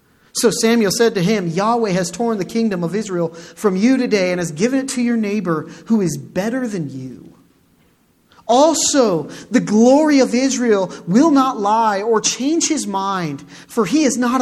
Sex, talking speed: male, 180 wpm